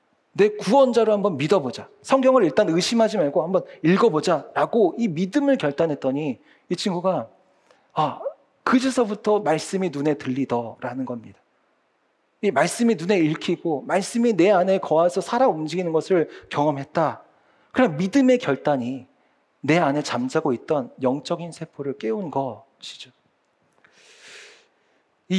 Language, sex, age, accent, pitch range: Korean, male, 40-59, native, 150-230 Hz